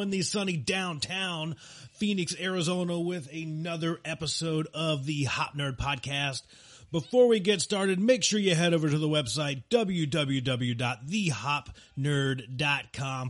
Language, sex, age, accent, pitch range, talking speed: English, male, 30-49, American, 135-175 Hz, 120 wpm